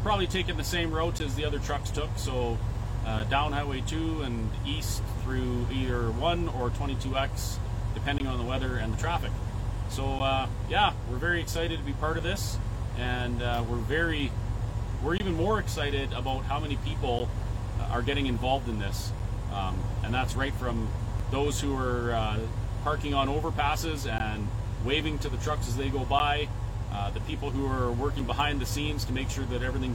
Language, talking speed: English, 185 wpm